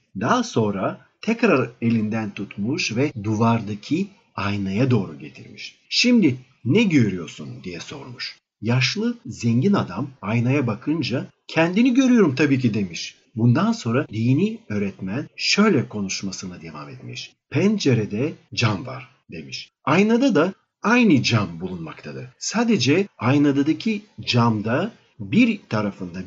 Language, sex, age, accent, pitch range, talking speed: Turkish, male, 50-69, native, 110-155 Hz, 105 wpm